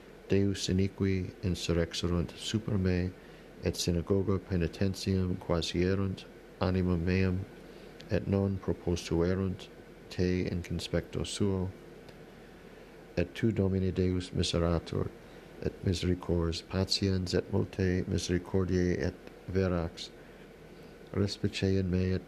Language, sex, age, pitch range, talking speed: English, male, 50-69, 90-95 Hz, 95 wpm